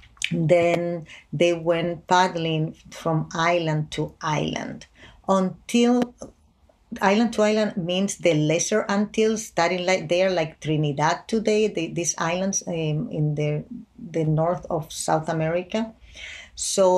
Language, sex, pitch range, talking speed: English, female, 155-190 Hz, 120 wpm